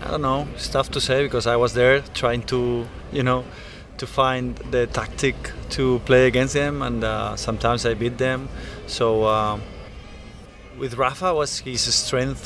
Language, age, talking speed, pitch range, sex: English, 20-39, 175 wpm, 115-130 Hz, male